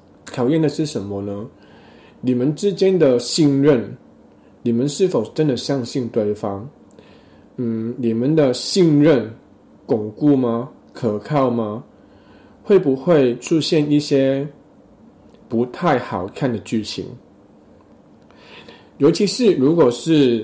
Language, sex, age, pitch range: Chinese, male, 20-39, 115-150 Hz